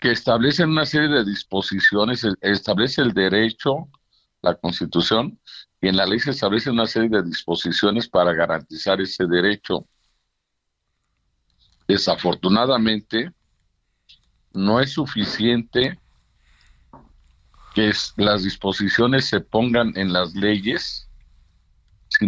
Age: 50-69